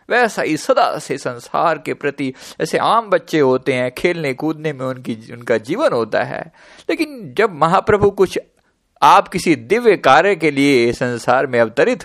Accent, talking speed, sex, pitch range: native, 165 wpm, male, 120-180 Hz